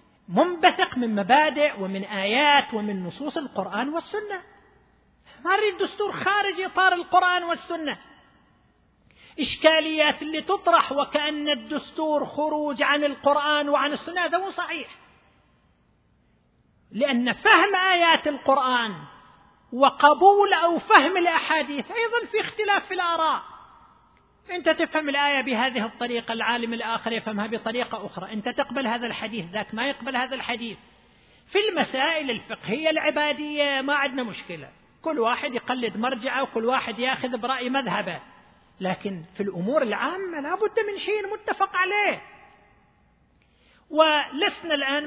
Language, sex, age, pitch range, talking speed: English, male, 40-59, 235-335 Hz, 115 wpm